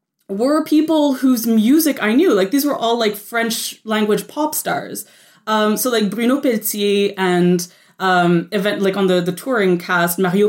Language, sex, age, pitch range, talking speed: English, female, 20-39, 185-240 Hz, 165 wpm